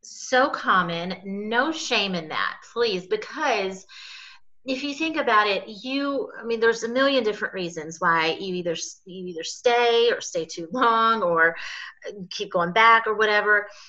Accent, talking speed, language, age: American, 160 wpm, English, 30-49